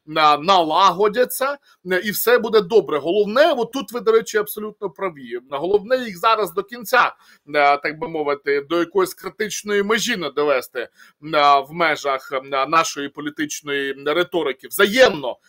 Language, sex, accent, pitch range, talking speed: Ukrainian, male, native, 165-245 Hz, 130 wpm